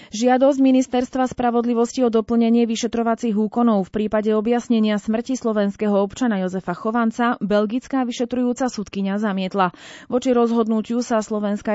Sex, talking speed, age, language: female, 115 wpm, 30-49, Slovak